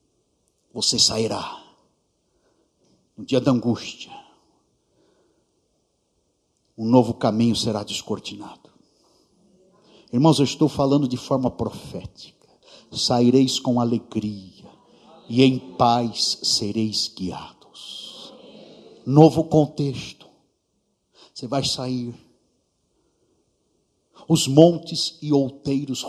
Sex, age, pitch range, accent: male, 60-79, 120-150 Hz, Brazilian